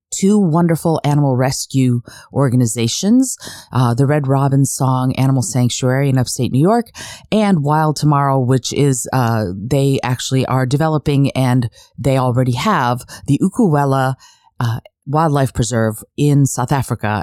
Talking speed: 130 wpm